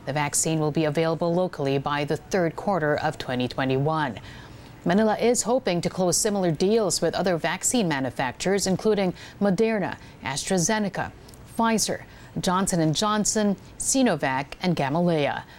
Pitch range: 150-195 Hz